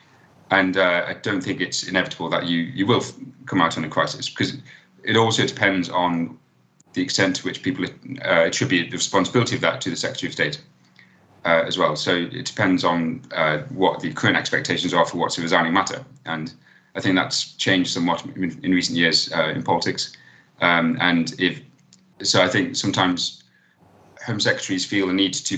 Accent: British